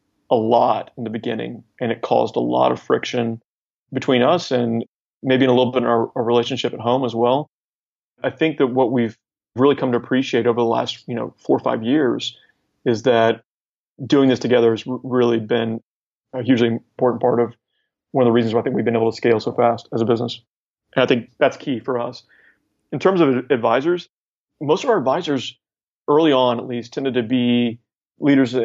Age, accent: 30-49, American